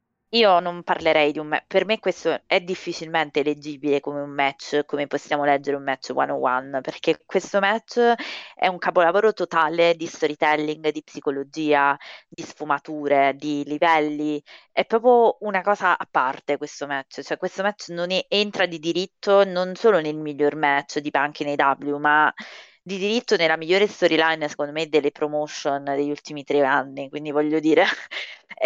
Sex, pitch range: female, 150-185 Hz